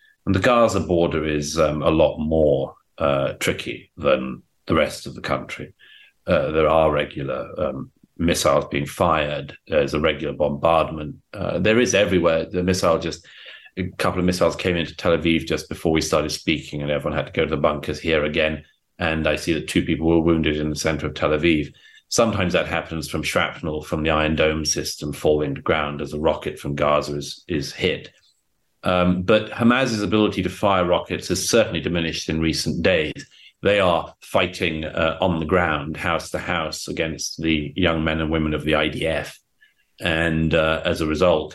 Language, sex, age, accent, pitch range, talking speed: English, male, 40-59, British, 75-90 Hz, 190 wpm